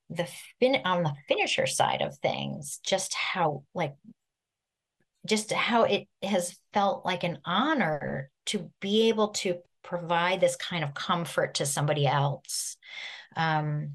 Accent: American